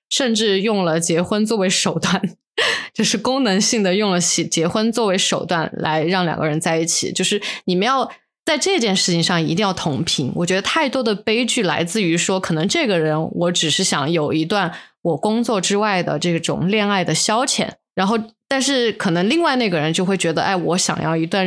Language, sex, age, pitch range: Chinese, female, 20-39, 170-205 Hz